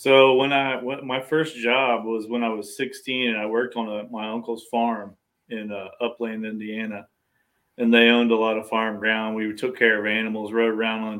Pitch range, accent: 110-120 Hz, American